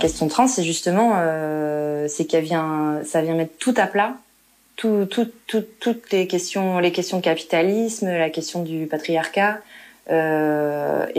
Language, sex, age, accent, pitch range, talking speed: French, female, 20-39, French, 155-195 Hz, 155 wpm